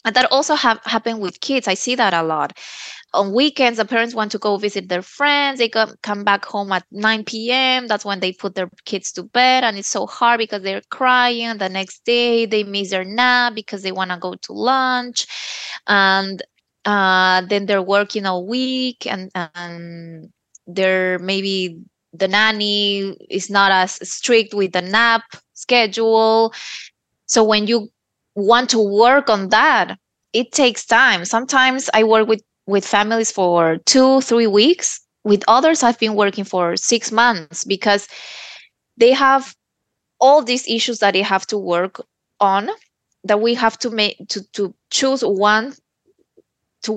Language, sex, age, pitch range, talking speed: English, female, 20-39, 190-235 Hz, 165 wpm